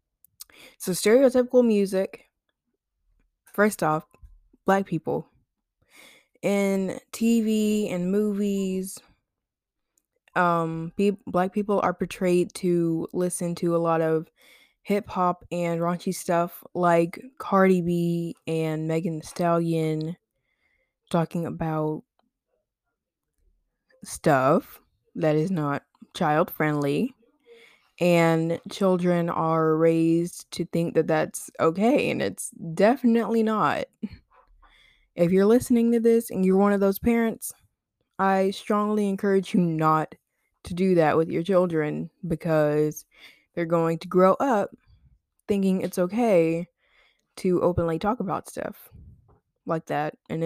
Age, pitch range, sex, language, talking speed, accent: 20-39, 165-205 Hz, female, English, 110 wpm, American